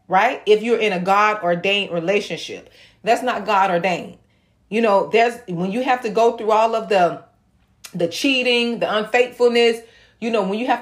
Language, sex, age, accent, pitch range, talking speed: English, female, 30-49, American, 195-245 Hz, 185 wpm